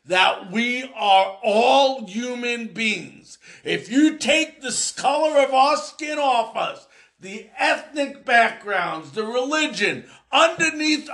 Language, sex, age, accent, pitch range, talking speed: English, male, 50-69, American, 220-290 Hz, 120 wpm